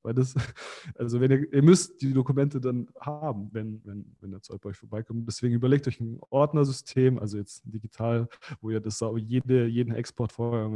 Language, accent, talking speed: German, German, 190 wpm